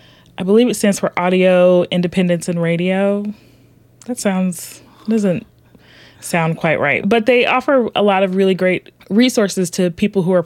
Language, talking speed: English, 160 wpm